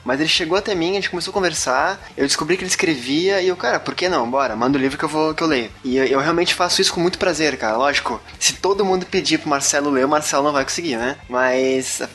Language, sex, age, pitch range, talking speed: Portuguese, male, 20-39, 135-165 Hz, 275 wpm